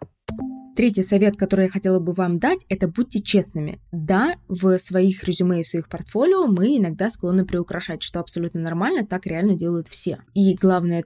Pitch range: 175-205 Hz